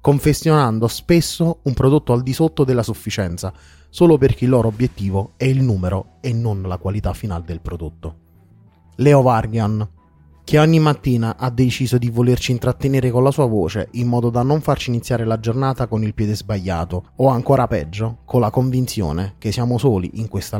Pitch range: 100-135 Hz